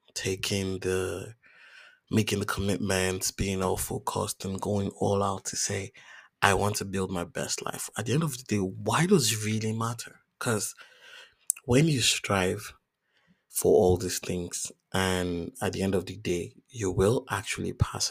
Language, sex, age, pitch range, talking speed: English, male, 30-49, 95-120 Hz, 170 wpm